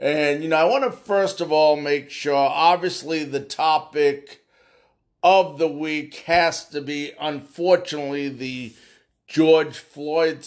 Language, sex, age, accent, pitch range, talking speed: English, male, 50-69, American, 145-220 Hz, 140 wpm